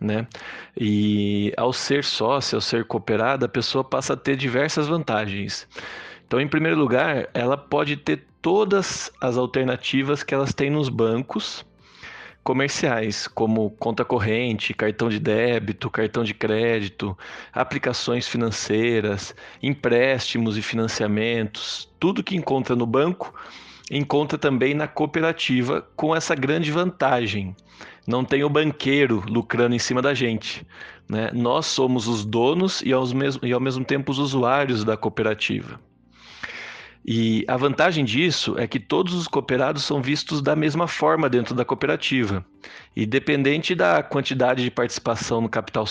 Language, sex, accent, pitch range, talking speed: Portuguese, male, Brazilian, 110-140 Hz, 140 wpm